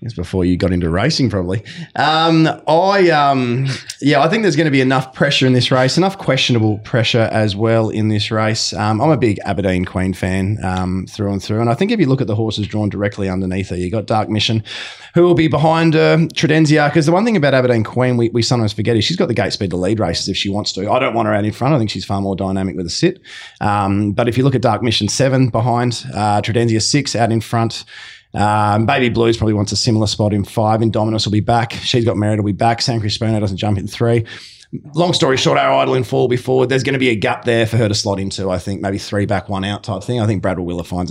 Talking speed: 265 wpm